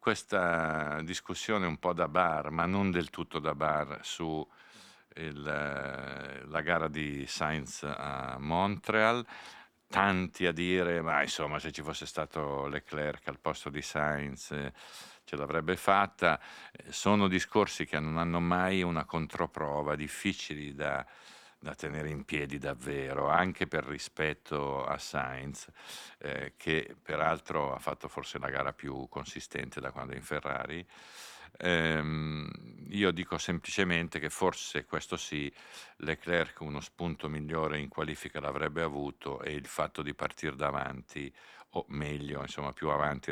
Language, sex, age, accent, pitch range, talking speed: Italian, male, 50-69, native, 70-85 Hz, 135 wpm